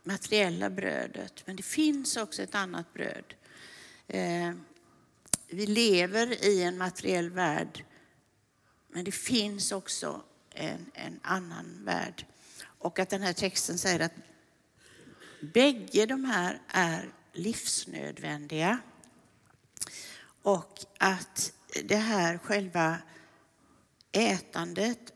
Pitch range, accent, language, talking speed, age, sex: 175-220 Hz, native, Swedish, 100 wpm, 60-79, female